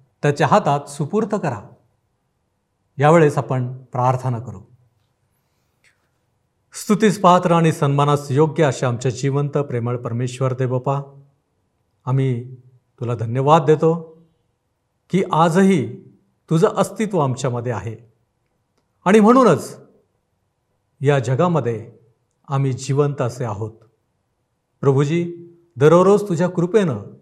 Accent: native